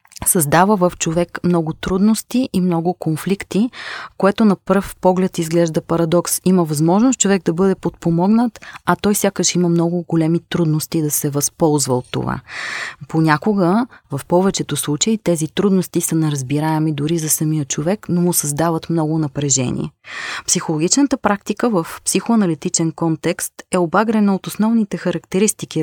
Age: 30-49